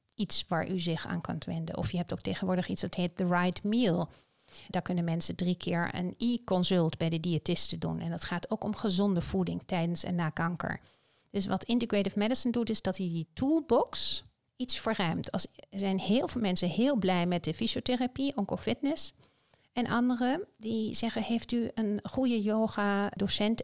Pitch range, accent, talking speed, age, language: 180-225 Hz, Dutch, 185 wpm, 40-59, Dutch